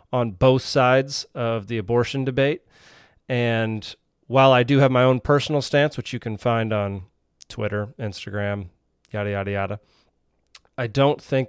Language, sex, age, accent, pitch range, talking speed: English, male, 30-49, American, 110-135 Hz, 150 wpm